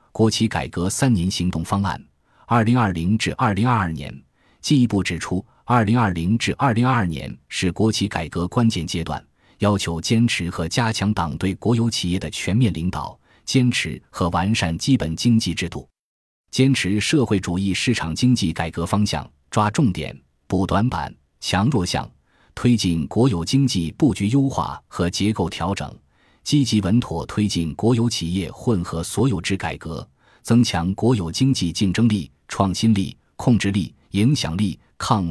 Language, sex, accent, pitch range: Chinese, male, native, 85-115 Hz